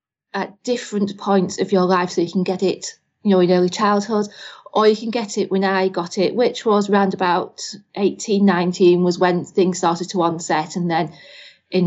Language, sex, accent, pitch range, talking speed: English, female, British, 180-205 Hz, 200 wpm